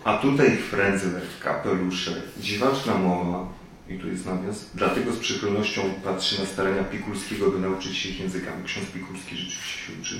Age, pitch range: 30-49, 95-110 Hz